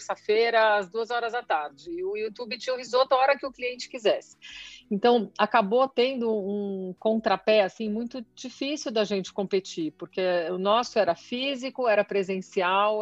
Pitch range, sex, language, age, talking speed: 195-235 Hz, female, Portuguese, 50-69, 170 wpm